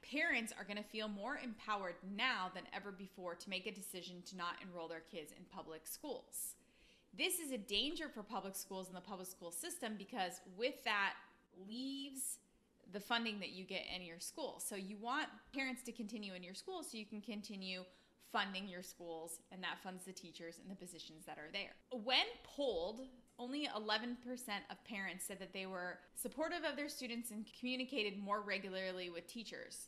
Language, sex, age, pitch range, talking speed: English, female, 20-39, 195-255 Hz, 190 wpm